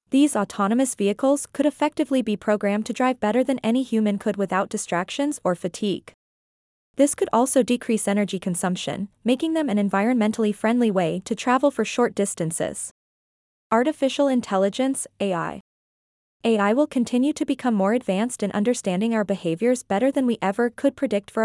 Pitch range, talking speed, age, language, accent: 205-255 Hz, 155 wpm, 20-39, English, American